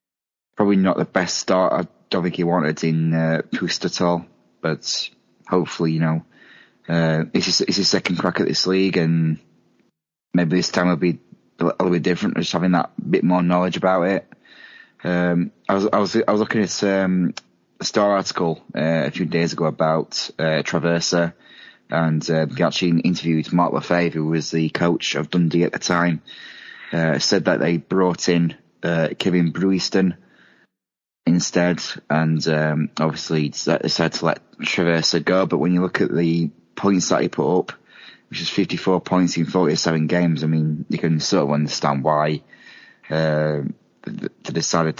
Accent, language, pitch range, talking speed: British, English, 80-90 Hz, 175 wpm